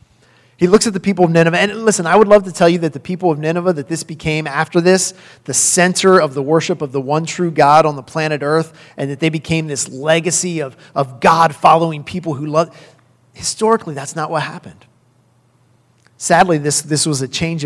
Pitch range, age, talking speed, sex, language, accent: 125-160 Hz, 30-49, 215 wpm, male, English, American